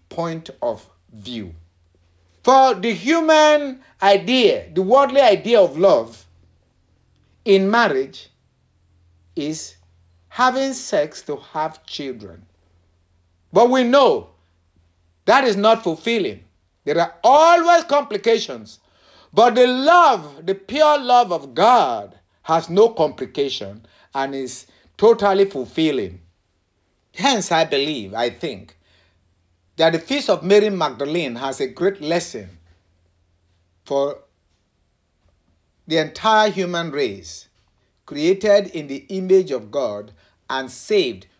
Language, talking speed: English, 105 wpm